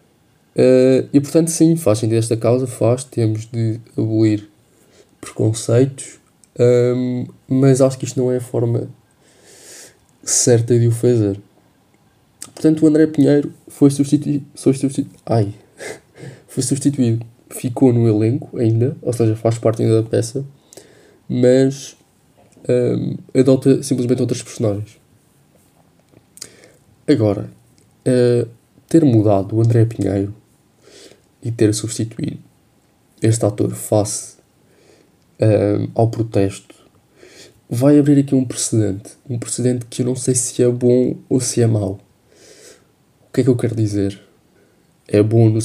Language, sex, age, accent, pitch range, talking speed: Portuguese, male, 20-39, Brazilian, 110-130 Hz, 120 wpm